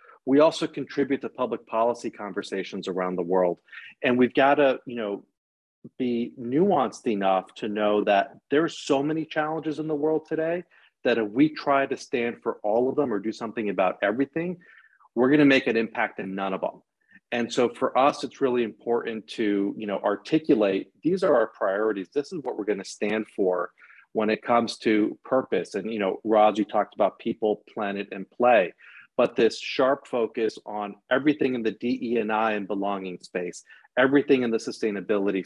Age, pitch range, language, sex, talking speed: 40-59, 100-135 Hz, English, male, 185 wpm